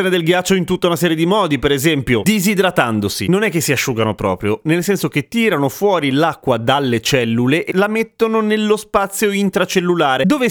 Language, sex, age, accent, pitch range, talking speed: Italian, male, 30-49, native, 125-195 Hz, 185 wpm